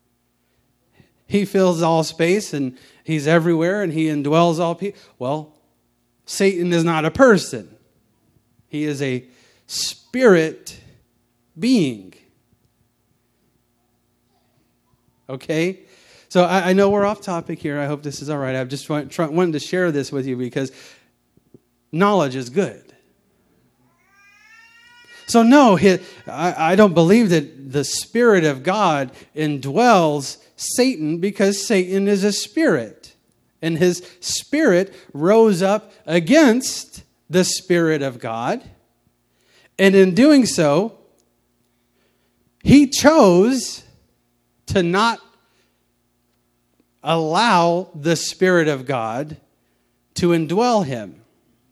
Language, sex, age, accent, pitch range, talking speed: English, male, 30-49, American, 135-195 Hz, 110 wpm